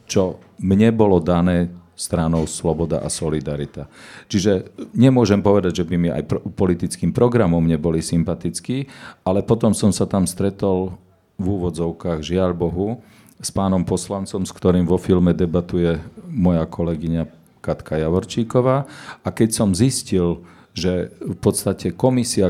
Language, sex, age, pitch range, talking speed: Slovak, male, 40-59, 90-110 Hz, 130 wpm